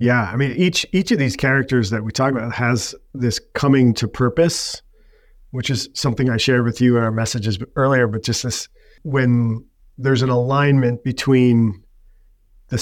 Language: English